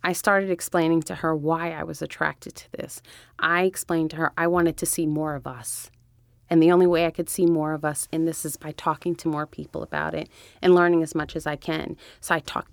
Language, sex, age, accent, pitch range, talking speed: English, female, 30-49, American, 155-200 Hz, 245 wpm